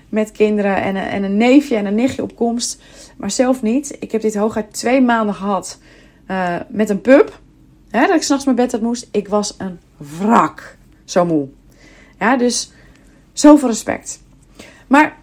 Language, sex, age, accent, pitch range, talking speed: Dutch, female, 30-49, Dutch, 215-295 Hz, 175 wpm